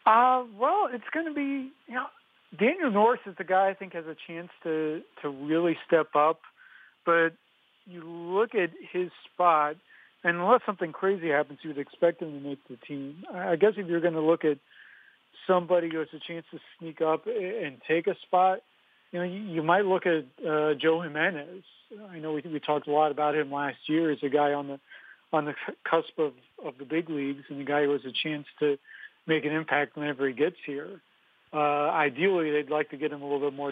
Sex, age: male, 40-59